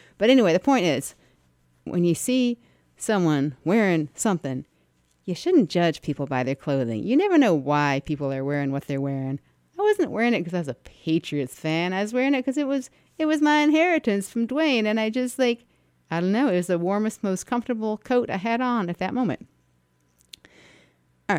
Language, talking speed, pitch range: English, 200 wpm, 140-220 Hz